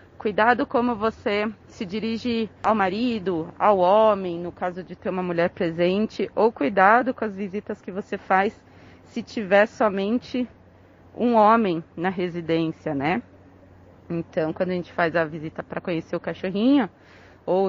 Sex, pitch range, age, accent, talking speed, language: female, 180-220 Hz, 30-49, Brazilian, 150 wpm, Portuguese